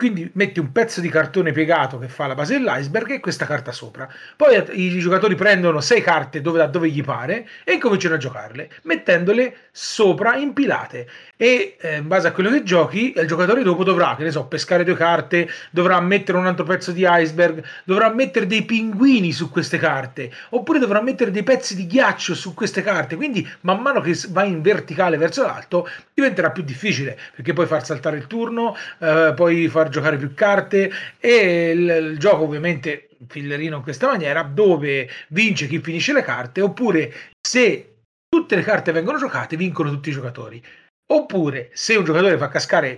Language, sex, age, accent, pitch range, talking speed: Italian, male, 30-49, native, 155-205 Hz, 180 wpm